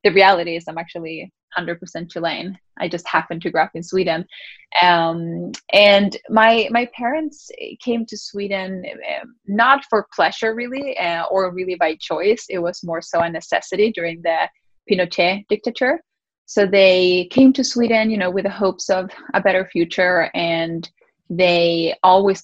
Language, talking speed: English, 160 wpm